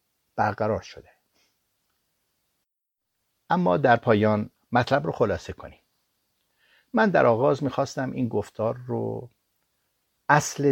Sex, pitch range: male, 100-130 Hz